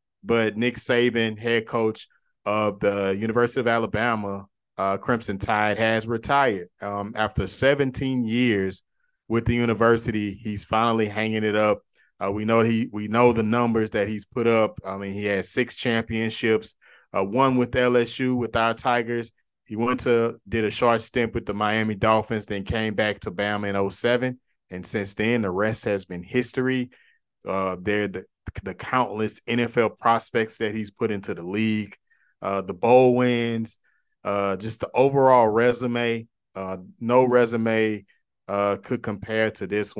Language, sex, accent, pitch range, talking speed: English, male, American, 100-115 Hz, 160 wpm